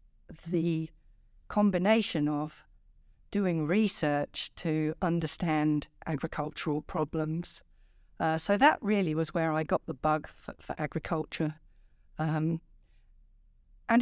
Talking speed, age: 105 wpm, 50-69